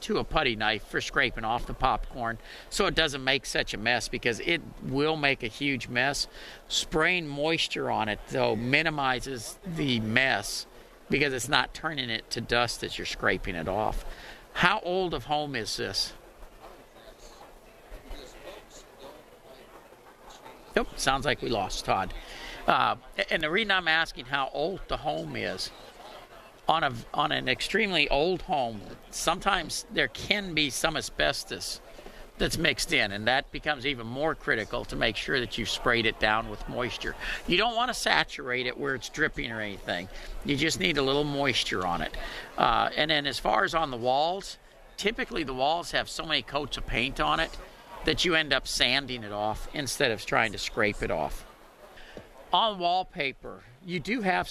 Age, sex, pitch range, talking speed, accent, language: 50-69, male, 125-160 Hz, 170 wpm, American, English